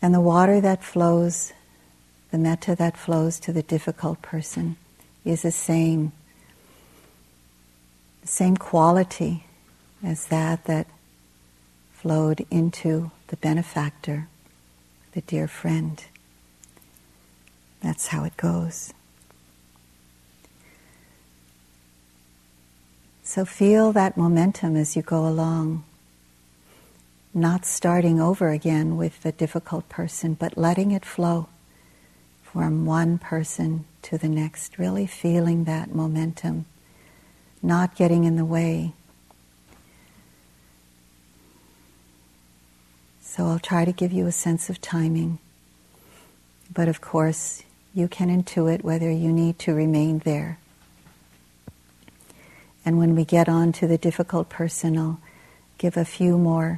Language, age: English, 60-79